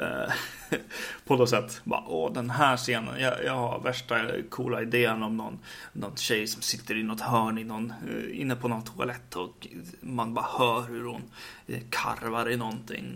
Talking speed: 175 wpm